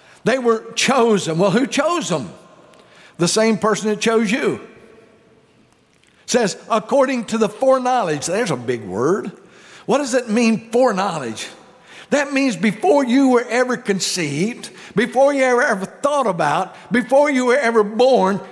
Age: 60-79